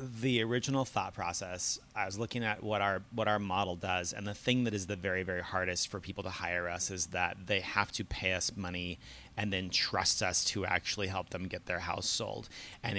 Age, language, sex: 30-49, English, male